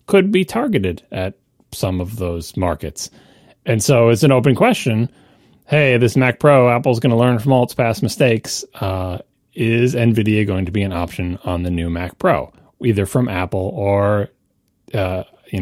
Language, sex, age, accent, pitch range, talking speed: English, male, 30-49, American, 95-135 Hz, 175 wpm